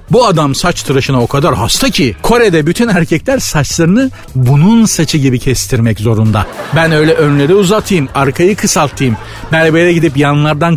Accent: native